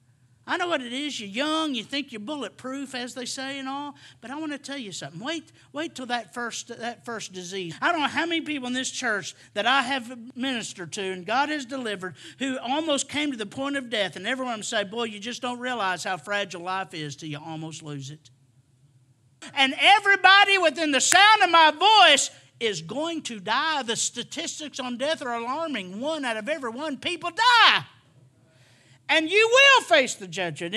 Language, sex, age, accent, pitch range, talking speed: English, male, 50-69, American, 185-290 Hz, 205 wpm